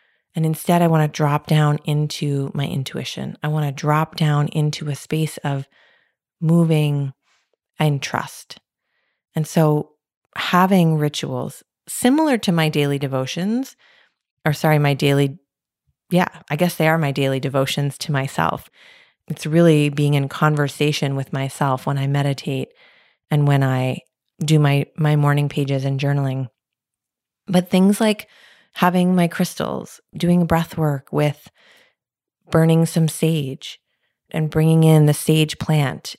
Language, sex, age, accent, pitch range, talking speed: English, female, 30-49, American, 140-160 Hz, 140 wpm